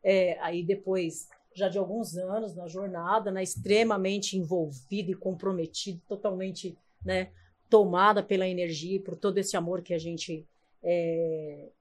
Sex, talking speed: female, 140 wpm